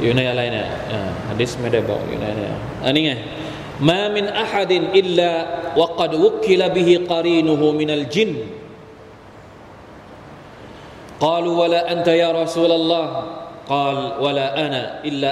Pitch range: 135-185 Hz